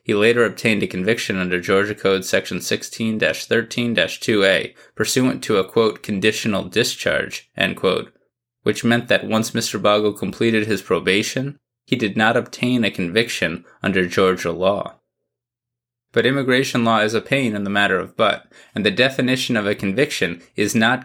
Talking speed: 155 wpm